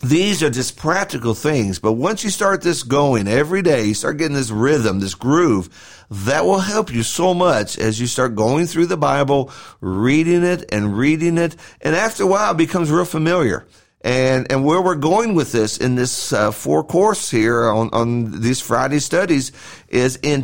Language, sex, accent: English, male, American